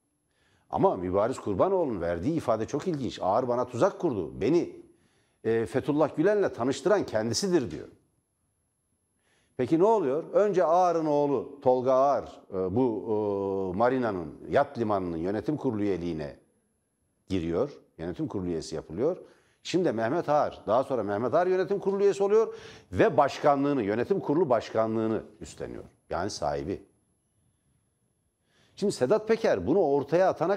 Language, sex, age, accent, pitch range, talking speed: Turkish, male, 60-79, native, 130-200 Hz, 125 wpm